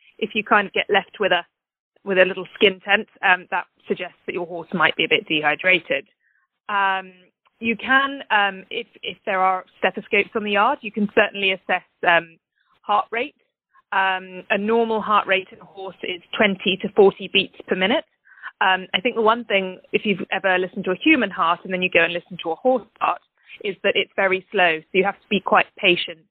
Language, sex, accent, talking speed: English, female, British, 215 wpm